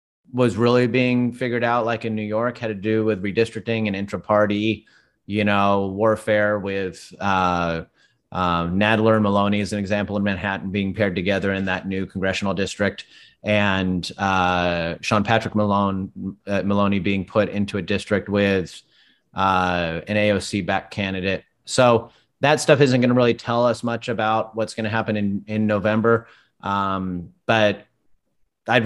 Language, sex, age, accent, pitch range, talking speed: English, male, 30-49, American, 100-120 Hz, 160 wpm